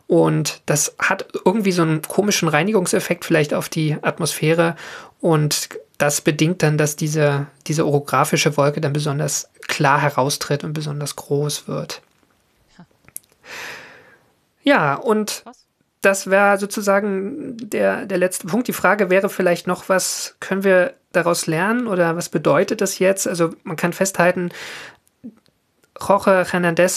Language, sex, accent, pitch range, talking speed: German, male, German, 155-195 Hz, 130 wpm